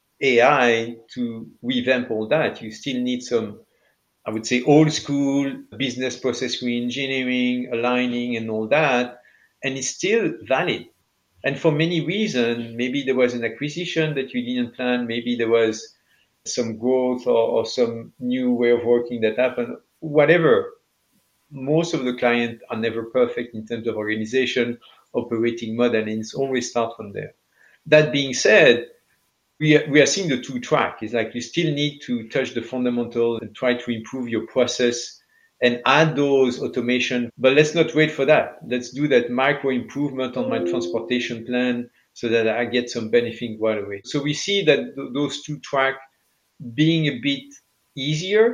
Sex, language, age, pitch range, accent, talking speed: male, English, 50-69, 120-140 Hz, French, 170 wpm